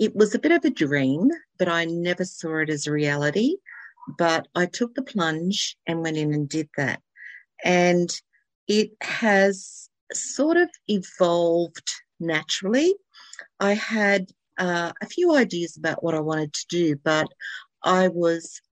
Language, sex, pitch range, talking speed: English, female, 155-190 Hz, 155 wpm